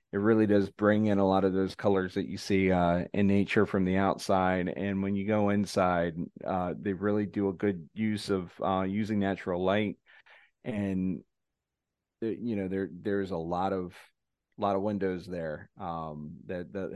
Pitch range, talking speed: 95-105 Hz, 185 wpm